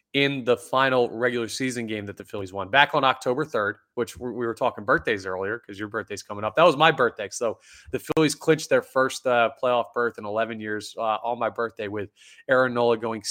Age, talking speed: 20-39, 220 wpm